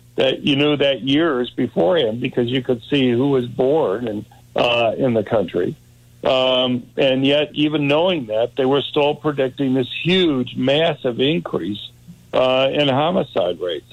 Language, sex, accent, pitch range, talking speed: English, male, American, 120-145 Hz, 155 wpm